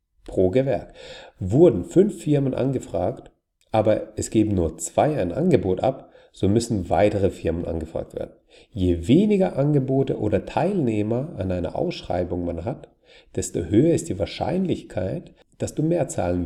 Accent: German